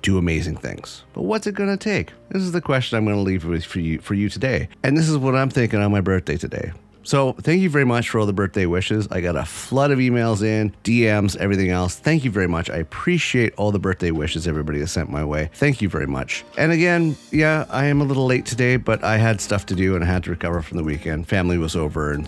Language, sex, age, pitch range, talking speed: English, male, 30-49, 90-130 Hz, 265 wpm